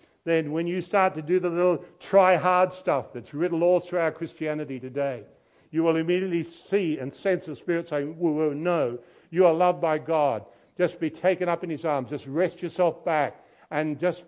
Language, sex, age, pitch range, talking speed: English, male, 60-79, 155-220 Hz, 200 wpm